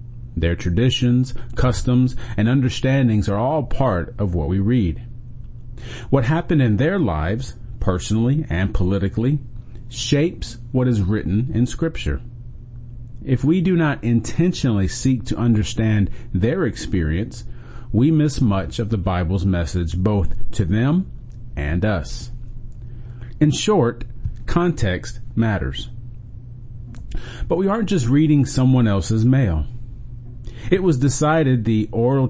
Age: 40-59